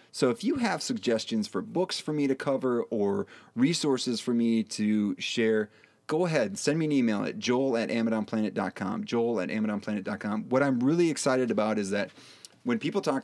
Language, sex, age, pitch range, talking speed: English, male, 30-49, 110-165 Hz, 185 wpm